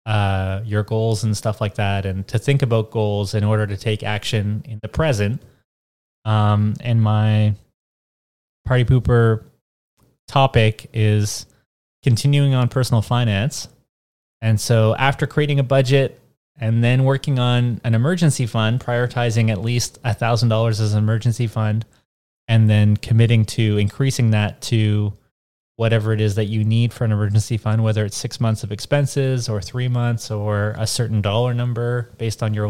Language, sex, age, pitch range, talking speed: English, male, 20-39, 105-120 Hz, 160 wpm